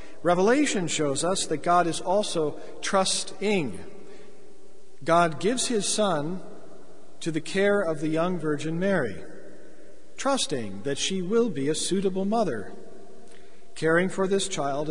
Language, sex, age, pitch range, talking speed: English, male, 50-69, 150-195 Hz, 130 wpm